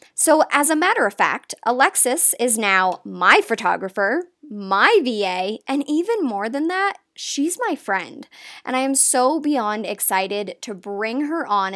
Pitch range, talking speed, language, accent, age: 200-285 Hz, 160 wpm, English, American, 20-39